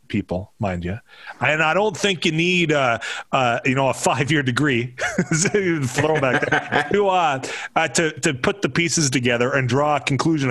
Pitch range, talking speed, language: 125-165 Hz, 160 wpm, English